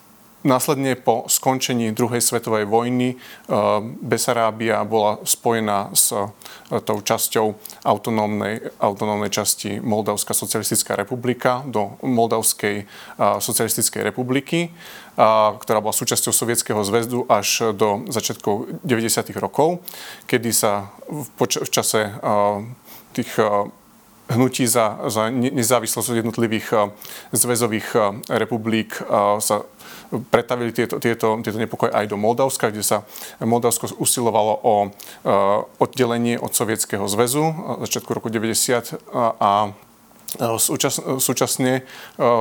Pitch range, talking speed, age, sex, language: 105-120 Hz, 100 wpm, 30-49, male, Slovak